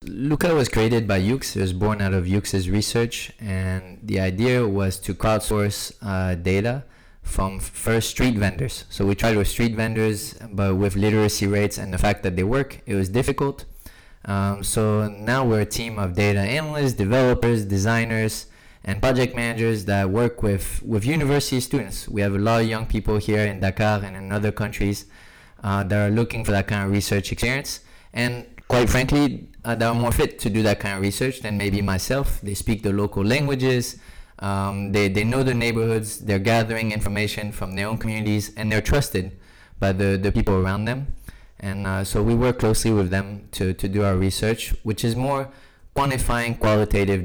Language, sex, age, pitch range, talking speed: English, male, 20-39, 100-115 Hz, 190 wpm